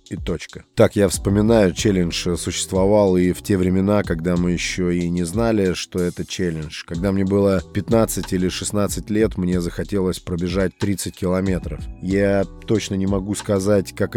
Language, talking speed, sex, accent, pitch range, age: Russian, 160 wpm, male, native, 95-115 Hz, 20-39